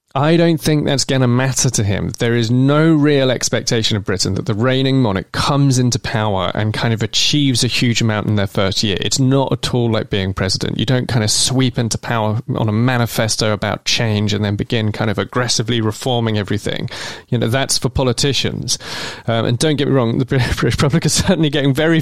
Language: English